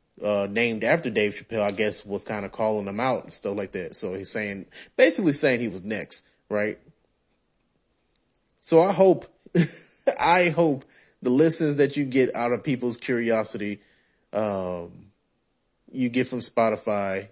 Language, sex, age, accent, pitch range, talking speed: English, male, 30-49, American, 100-130 Hz, 155 wpm